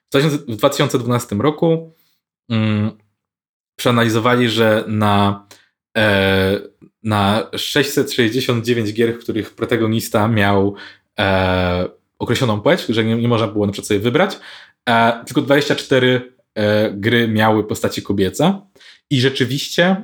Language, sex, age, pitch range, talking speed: Polish, male, 20-39, 110-135 Hz, 110 wpm